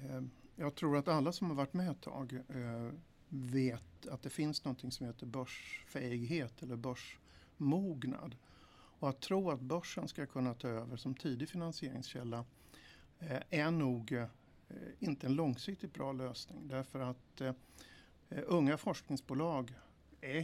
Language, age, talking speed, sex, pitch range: Swedish, 50-69, 130 wpm, male, 125-145 Hz